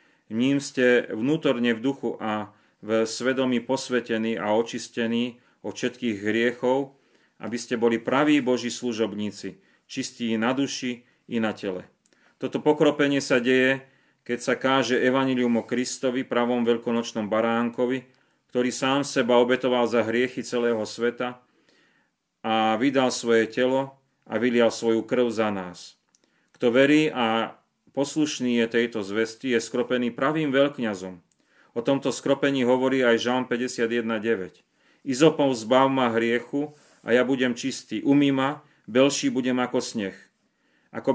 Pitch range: 115-130 Hz